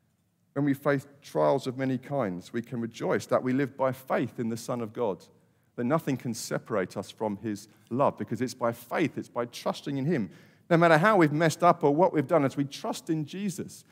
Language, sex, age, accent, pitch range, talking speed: English, male, 40-59, British, 115-150 Hz, 225 wpm